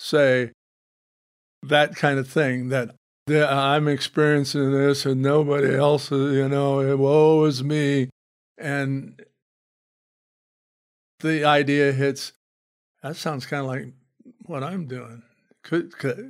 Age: 50-69